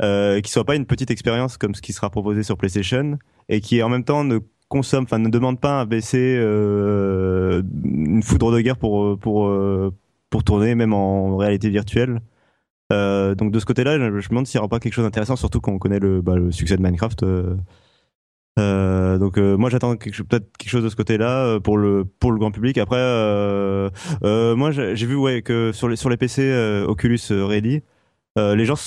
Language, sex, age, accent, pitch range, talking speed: French, male, 20-39, French, 100-120 Hz, 215 wpm